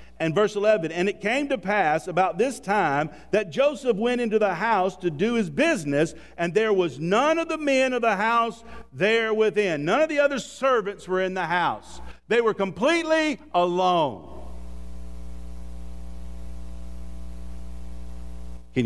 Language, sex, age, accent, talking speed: English, male, 50-69, American, 150 wpm